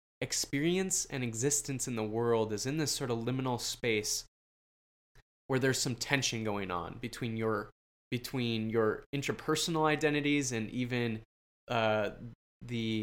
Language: English